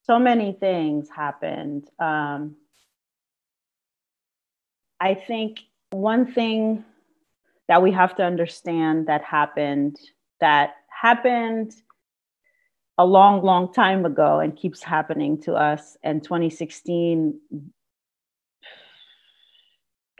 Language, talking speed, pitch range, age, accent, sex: English, 90 wpm, 150-195 Hz, 30-49, American, female